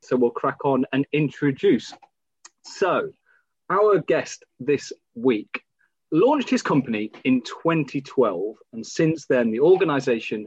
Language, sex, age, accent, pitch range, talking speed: English, male, 30-49, British, 130-190 Hz, 120 wpm